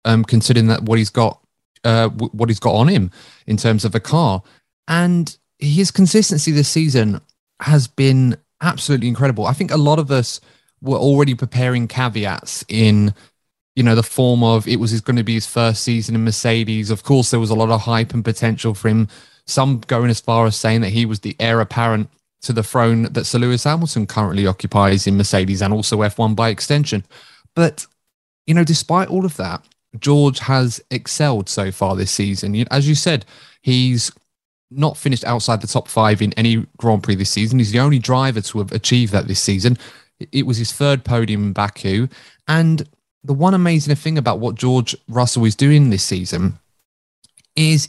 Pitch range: 110-135 Hz